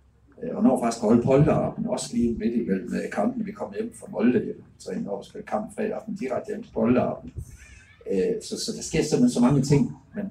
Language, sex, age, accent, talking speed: Danish, male, 60-79, native, 205 wpm